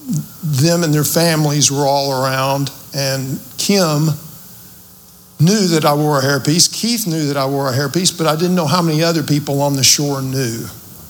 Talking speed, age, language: 185 wpm, 50-69, English